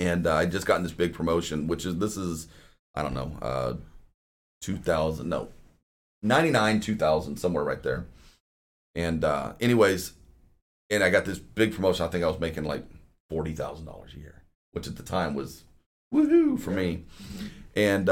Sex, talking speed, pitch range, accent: male, 165 wpm, 80-100 Hz, American